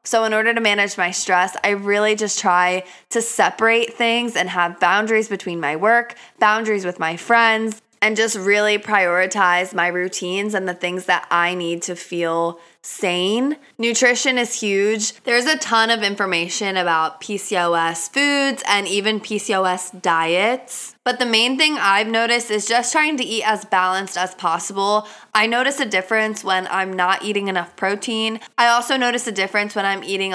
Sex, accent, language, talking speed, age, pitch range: female, American, English, 170 wpm, 20-39, 185-230 Hz